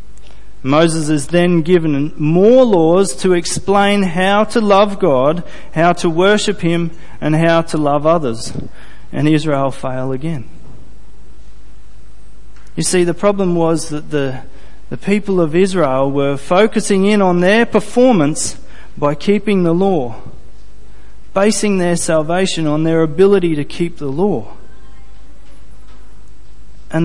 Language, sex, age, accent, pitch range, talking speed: English, male, 30-49, Australian, 135-190 Hz, 125 wpm